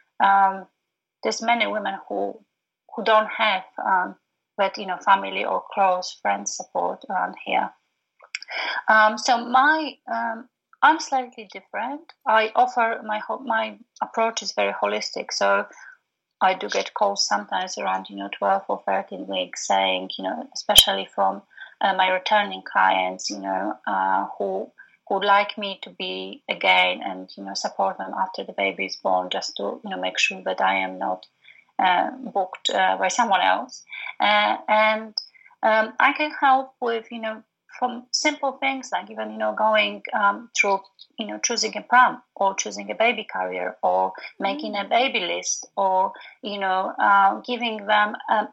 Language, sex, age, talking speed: English, female, 30-49, 165 wpm